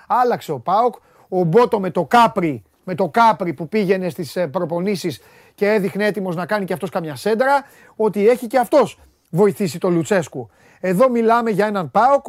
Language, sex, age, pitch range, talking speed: Greek, male, 30-49, 180-245 Hz, 165 wpm